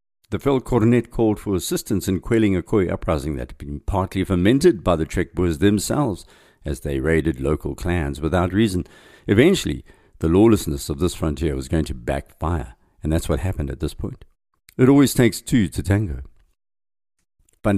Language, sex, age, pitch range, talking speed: English, male, 60-79, 80-105 Hz, 170 wpm